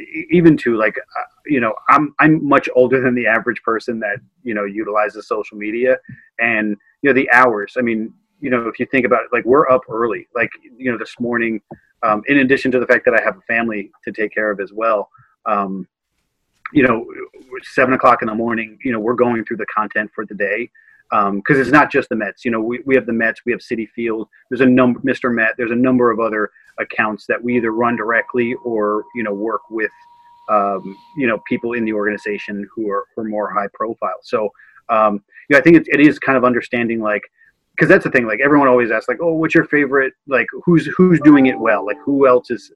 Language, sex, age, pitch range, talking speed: English, male, 30-49, 110-135 Hz, 235 wpm